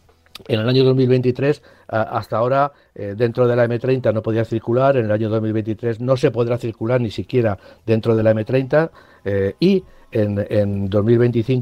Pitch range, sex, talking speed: 105-125 Hz, male, 165 wpm